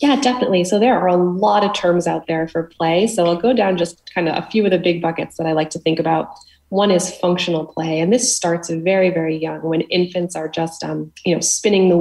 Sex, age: female, 20-39